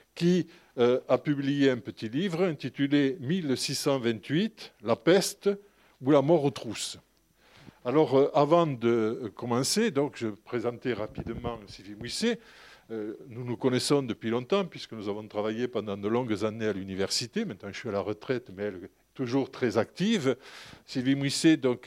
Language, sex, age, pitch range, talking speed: French, male, 50-69, 115-150 Hz, 160 wpm